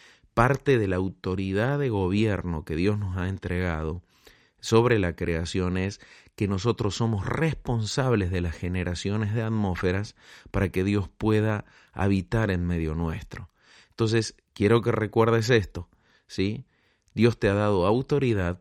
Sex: male